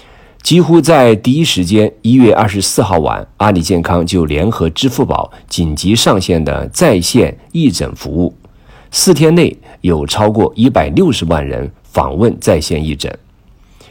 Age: 50-69